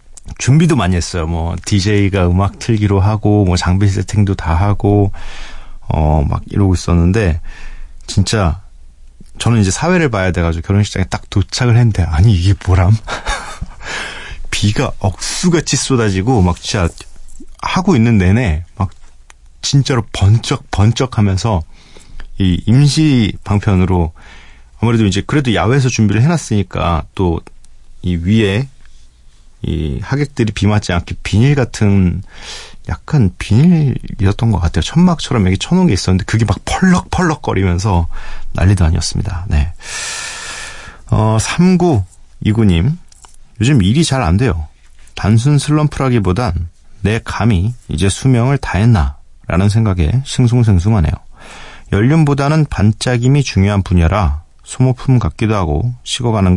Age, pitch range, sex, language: 40-59, 90-120 Hz, male, Korean